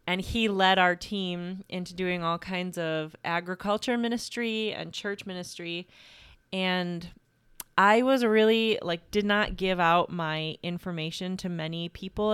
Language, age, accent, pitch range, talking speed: English, 30-49, American, 175-215 Hz, 140 wpm